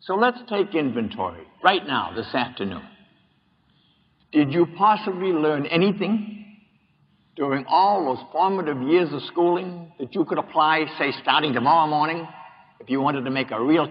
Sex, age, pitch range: male, 60-79, 135-170 Hz